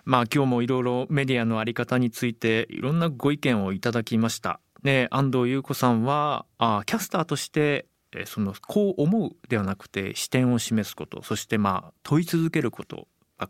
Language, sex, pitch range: Japanese, male, 110-165 Hz